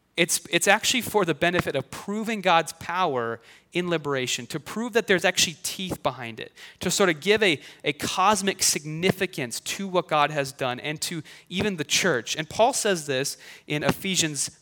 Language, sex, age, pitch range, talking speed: English, male, 30-49, 140-185 Hz, 180 wpm